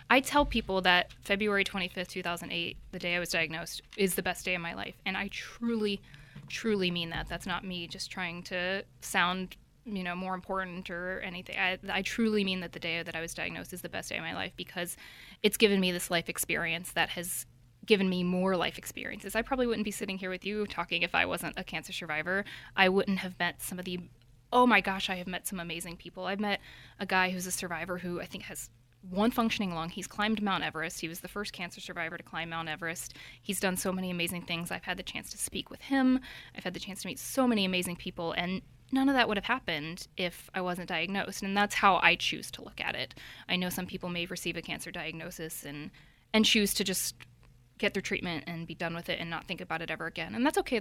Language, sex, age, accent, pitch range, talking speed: English, female, 20-39, American, 170-200 Hz, 240 wpm